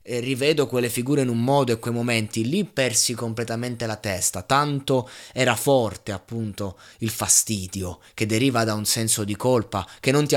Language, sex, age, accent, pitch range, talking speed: Italian, male, 20-39, native, 110-140 Hz, 175 wpm